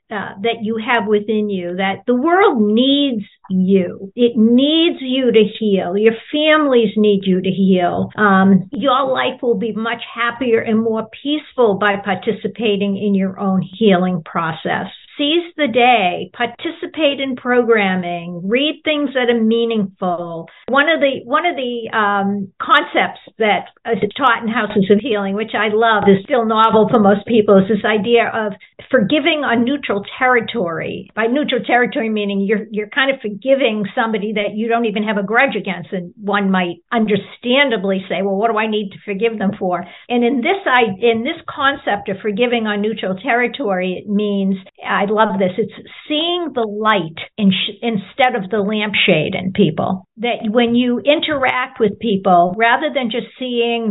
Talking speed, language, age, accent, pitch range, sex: 170 wpm, English, 50-69, American, 200-245 Hz, female